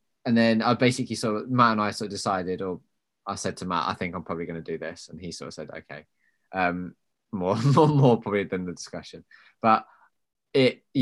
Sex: male